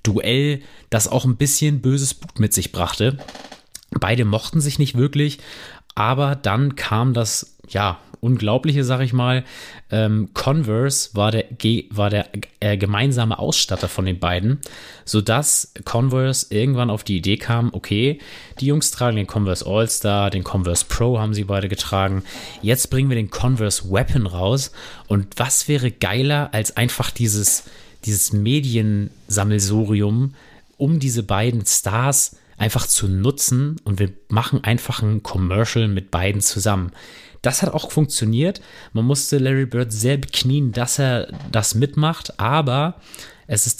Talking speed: 145 wpm